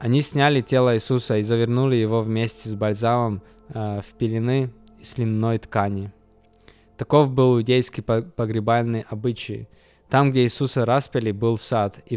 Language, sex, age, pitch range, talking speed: Russian, male, 20-39, 110-135 Hz, 140 wpm